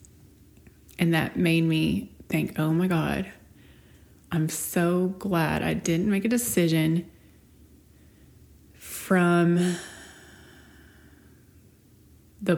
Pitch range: 160-205 Hz